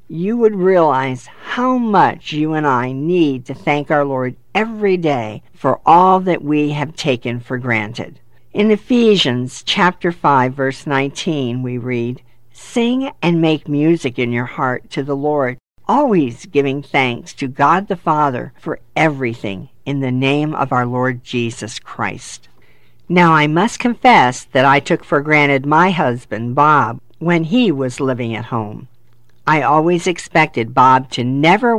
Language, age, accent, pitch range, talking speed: English, 50-69, American, 125-165 Hz, 155 wpm